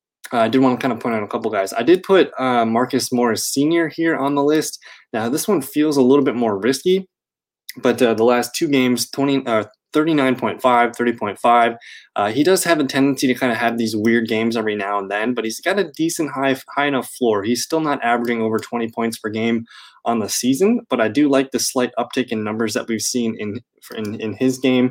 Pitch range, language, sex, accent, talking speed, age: 110-135 Hz, English, male, American, 230 wpm, 20-39